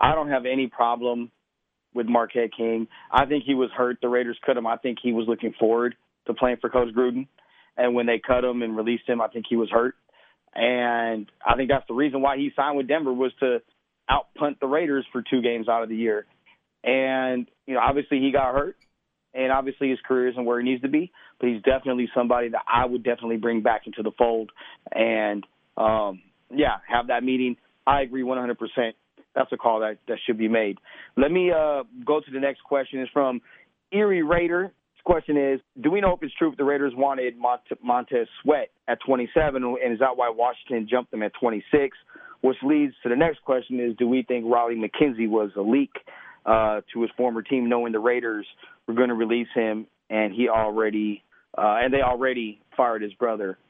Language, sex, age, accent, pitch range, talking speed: English, male, 30-49, American, 115-135 Hz, 210 wpm